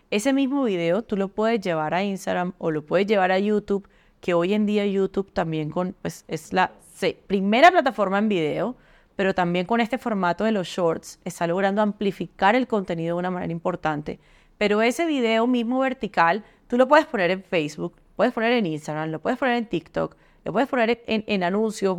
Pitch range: 175-210 Hz